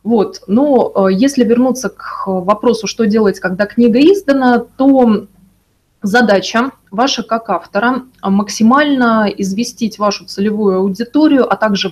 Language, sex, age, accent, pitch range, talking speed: Russian, female, 20-39, native, 200-245 Hz, 120 wpm